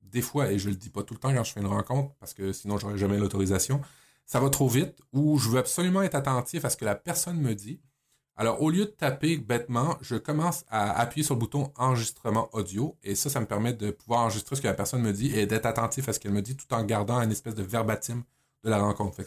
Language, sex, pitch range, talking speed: French, male, 105-140 Hz, 270 wpm